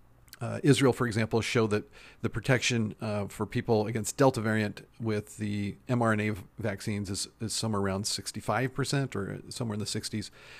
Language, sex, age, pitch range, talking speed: English, male, 40-59, 105-125 Hz, 165 wpm